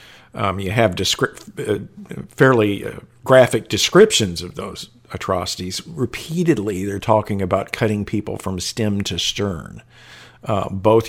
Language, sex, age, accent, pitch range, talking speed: English, male, 50-69, American, 95-120 Hz, 130 wpm